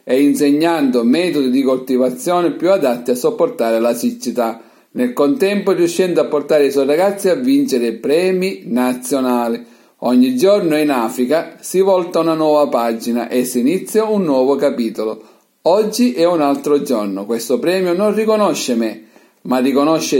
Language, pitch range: Italian, 125-185 Hz